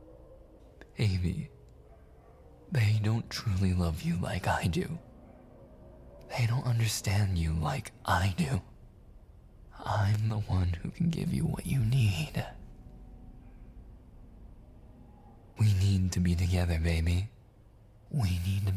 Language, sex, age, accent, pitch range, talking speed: English, male, 20-39, American, 90-115 Hz, 110 wpm